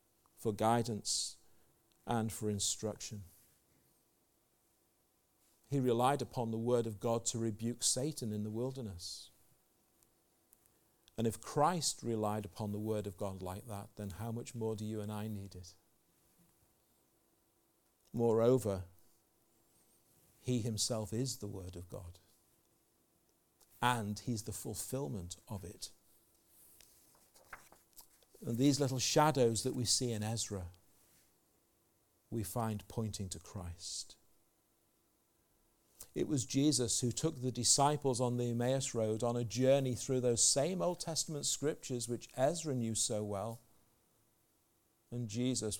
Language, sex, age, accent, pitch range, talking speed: English, male, 50-69, British, 105-120 Hz, 120 wpm